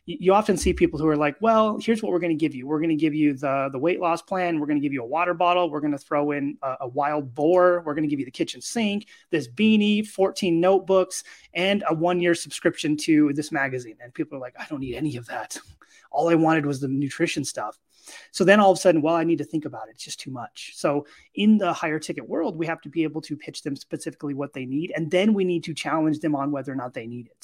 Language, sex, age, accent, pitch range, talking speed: English, male, 30-49, American, 140-175 Hz, 280 wpm